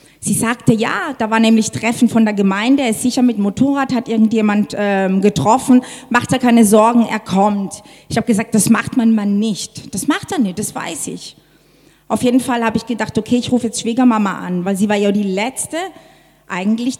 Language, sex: German, female